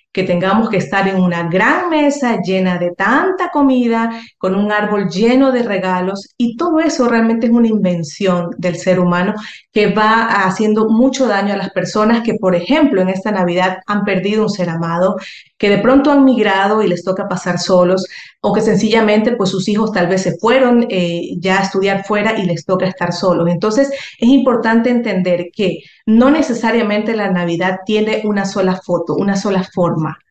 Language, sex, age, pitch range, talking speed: Spanish, female, 30-49, 180-230 Hz, 185 wpm